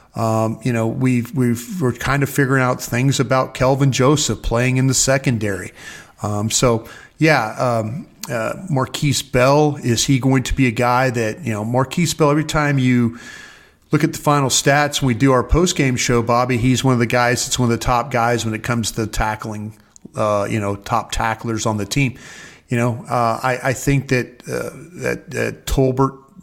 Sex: male